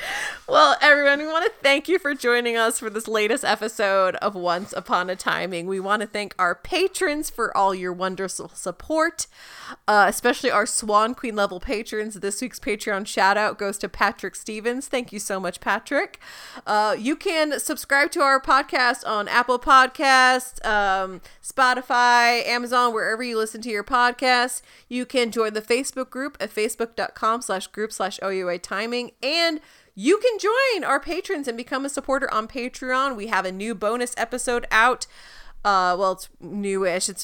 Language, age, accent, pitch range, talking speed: English, 30-49, American, 195-255 Hz, 170 wpm